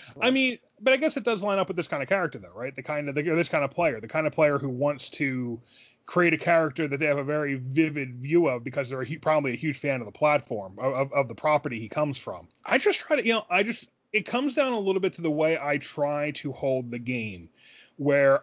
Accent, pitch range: American, 135-170 Hz